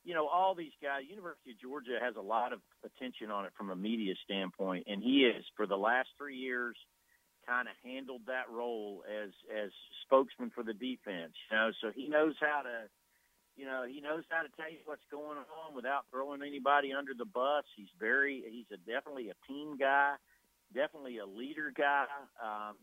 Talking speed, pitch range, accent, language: 195 wpm, 115-145 Hz, American, English